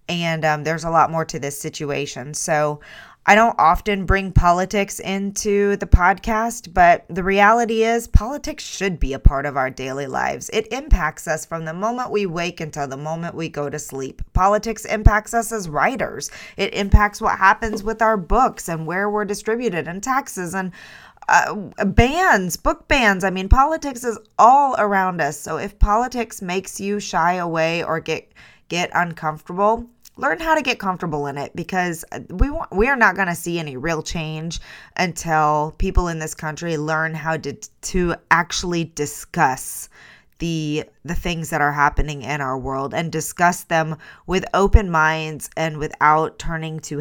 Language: English